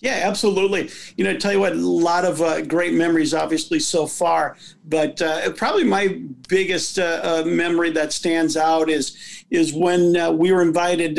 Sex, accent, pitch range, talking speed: male, American, 160-190 Hz, 190 wpm